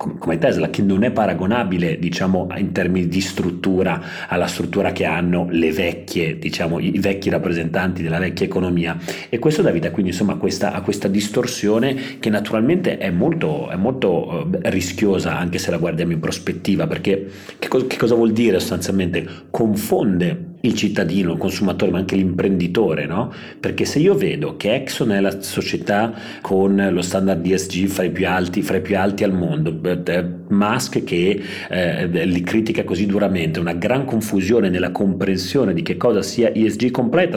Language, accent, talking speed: Italian, native, 170 wpm